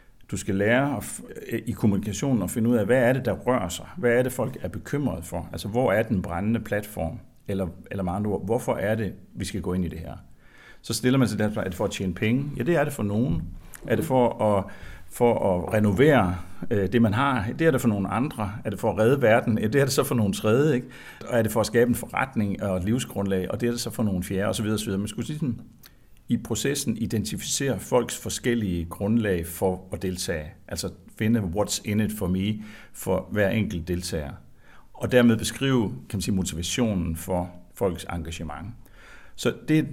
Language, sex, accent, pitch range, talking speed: Danish, male, native, 90-115 Hz, 220 wpm